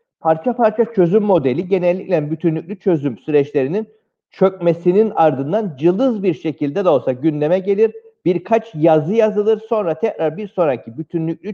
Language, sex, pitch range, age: Turkish, male, 150-190 Hz, 50-69